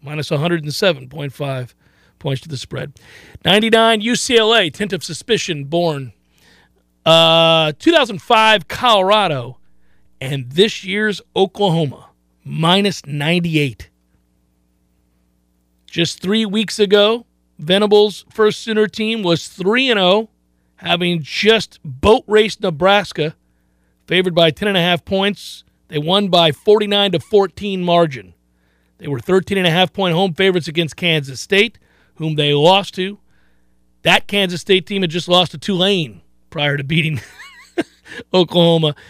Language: English